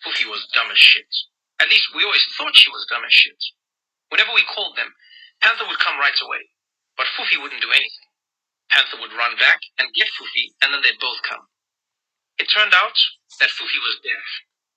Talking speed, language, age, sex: 195 wpm, English, 30-49, male